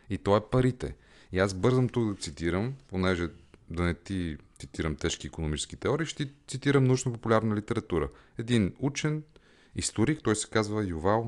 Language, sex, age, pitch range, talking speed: Bulgarian, male, 30-49, 80-110 Hz, 155 wpm